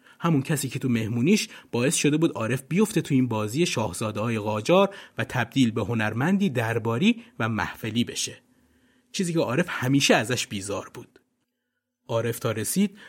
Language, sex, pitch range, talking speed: Persian, male, 125-180 Hz, 150 wpm